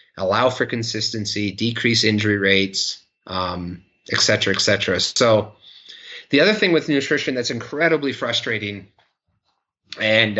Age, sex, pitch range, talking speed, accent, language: 30-49, male, 100-120 Hz, 120 wpm, American, English